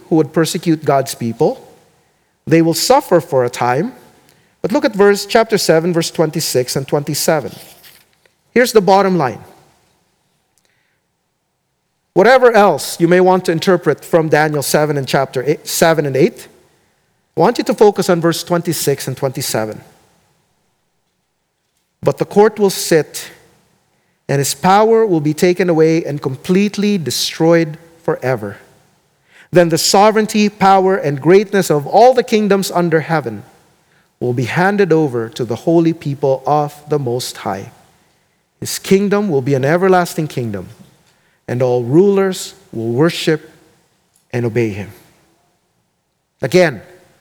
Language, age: English, 40-59